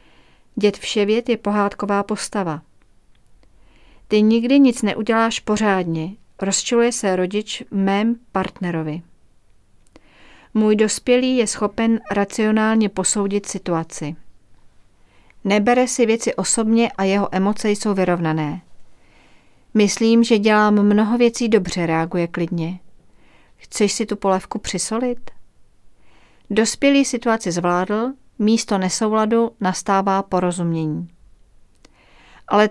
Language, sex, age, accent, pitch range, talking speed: Czech, female, 40-59, native, 170-220 Hz, 95 wpm